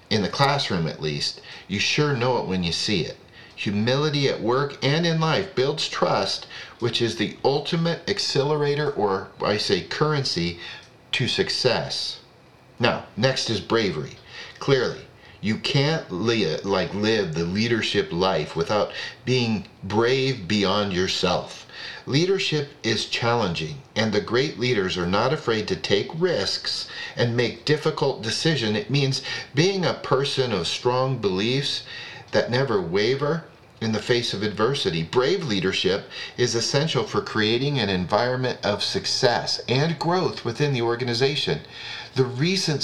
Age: 40-59